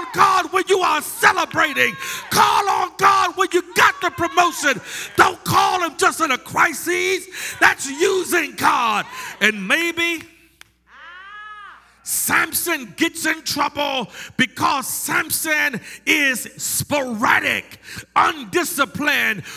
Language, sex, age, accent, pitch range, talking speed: English, male, 50-69, American, 230-330 Hz, 105 wpm